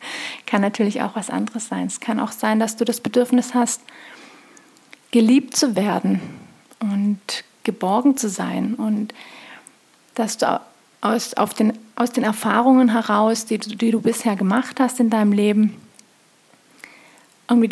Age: 30-49